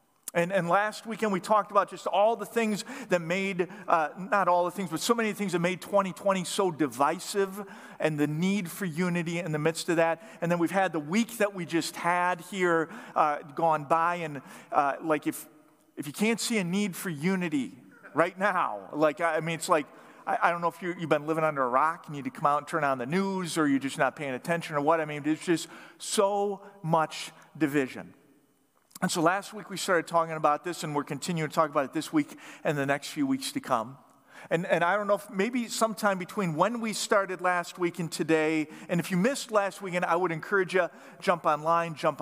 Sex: male